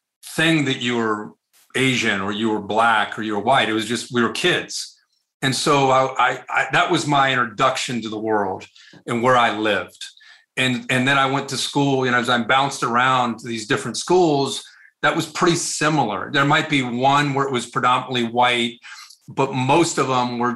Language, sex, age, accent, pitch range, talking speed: English, male, 40-59, American, 120-150 Hz, 205 wpm